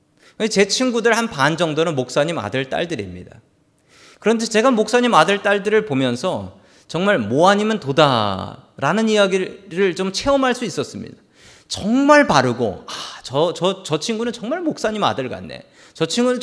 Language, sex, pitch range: Korean, male, 155-235 Hz